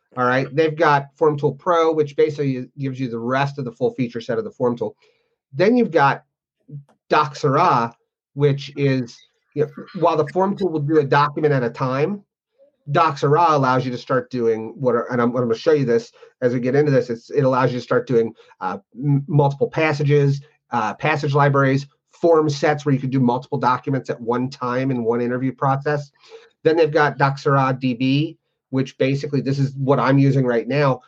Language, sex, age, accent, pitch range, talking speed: English, male, 30-49, American, 125-150 Hz, 205 wpm